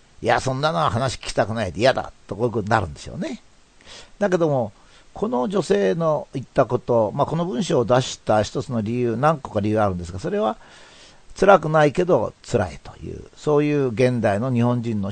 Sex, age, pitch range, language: male, 50-69, 105-150 Hz, Japanese